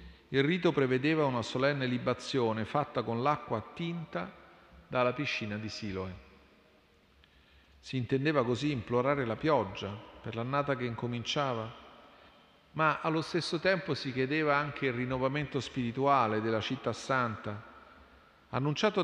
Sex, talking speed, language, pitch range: male, 120 wpm, Italian, 105-145 Hz